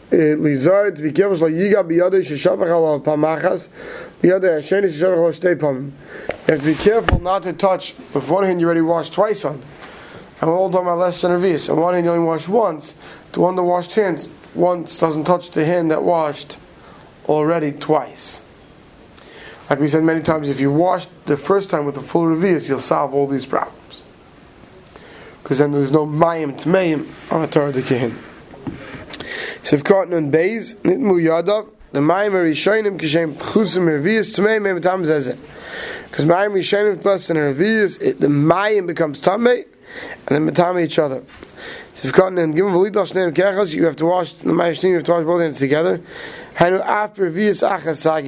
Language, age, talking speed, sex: English, 30-49, 125 wpm, male